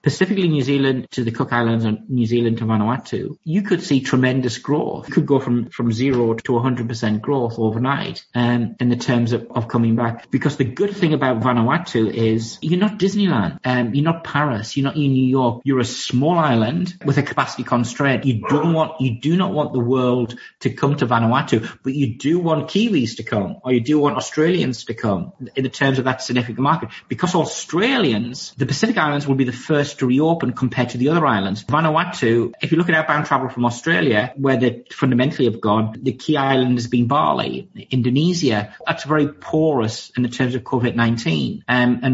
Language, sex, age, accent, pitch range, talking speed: English, male, 30-49, British, 120-150 Hz, 205 wpm